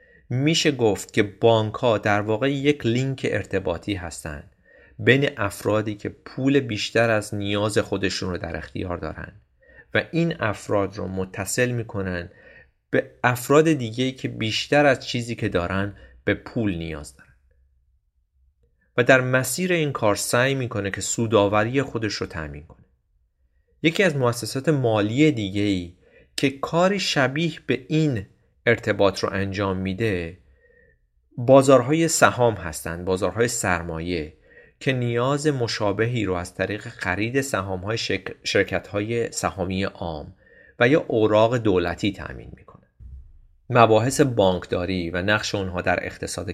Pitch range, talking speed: 90-120 Hz, 125 wpm